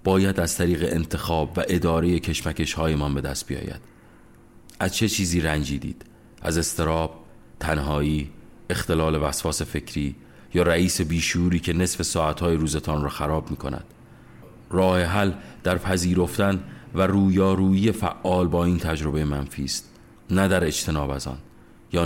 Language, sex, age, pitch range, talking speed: Persian, male, 30-49, 80-100 Hz, 135 wpm